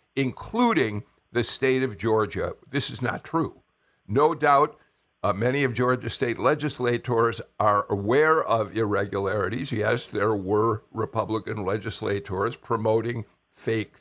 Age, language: 60-79, English